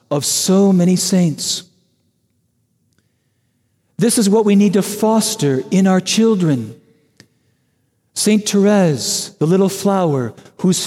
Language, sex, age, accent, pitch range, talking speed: English, male, 50-69, American, 155-205 Hz, 110 wpm